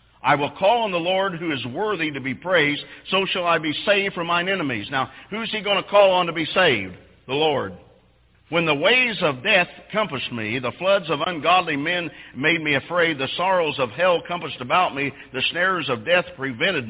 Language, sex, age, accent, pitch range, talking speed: English, male, 50-69, American, 130-180 Hz, 215 wpm